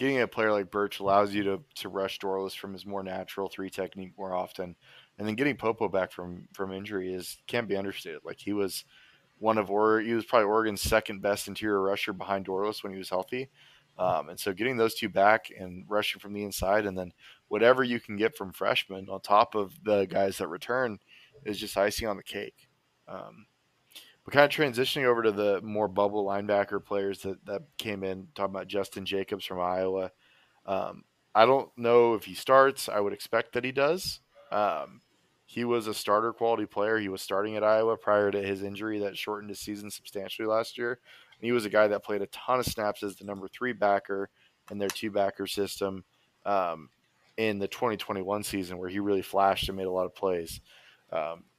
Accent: American